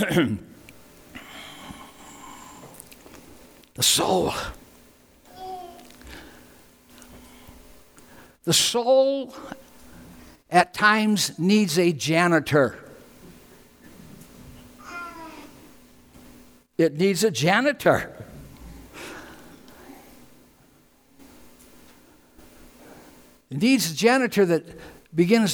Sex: male